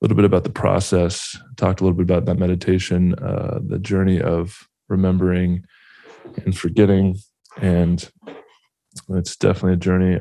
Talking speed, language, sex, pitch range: 140 wpm, English, male, 85-95 Hz